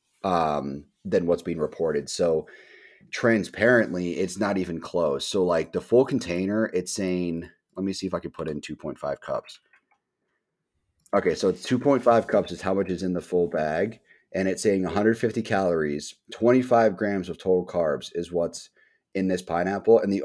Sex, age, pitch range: male, 30-49, 85-100 Hz